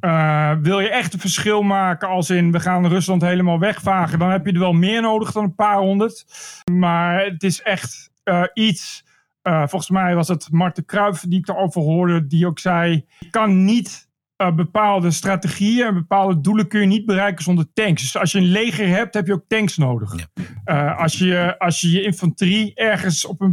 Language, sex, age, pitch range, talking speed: Dutch, male, 40-59, 165-200 Hz, 205 wpm